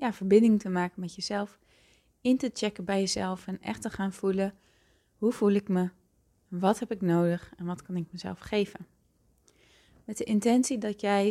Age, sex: 20-39, female